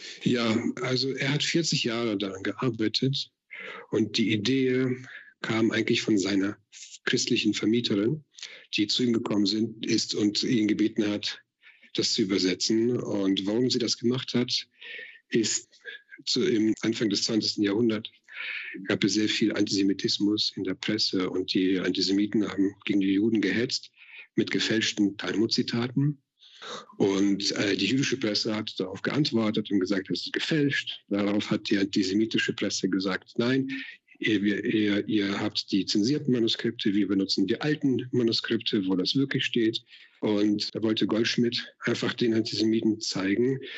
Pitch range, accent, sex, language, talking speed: 105-125 Hz, German, male, German, 145 wpm